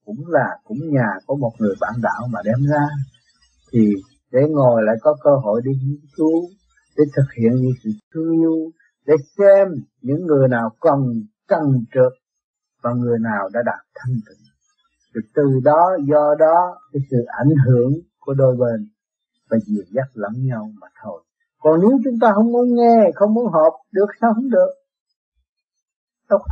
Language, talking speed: Vietnamese, 175 wpm